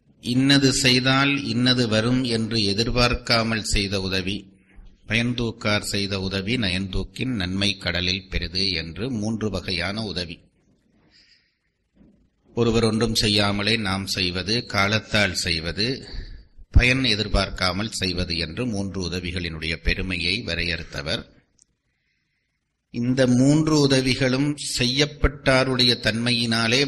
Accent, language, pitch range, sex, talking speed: native, Tamil, 95-125 Hz, male, 85 wpm